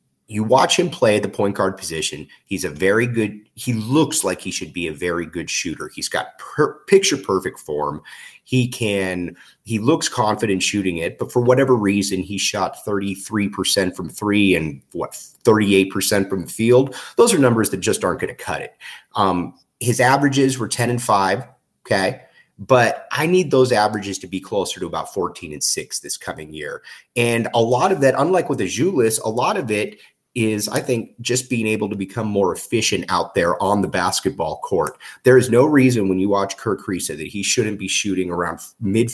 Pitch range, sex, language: 95-125 Hz, male, English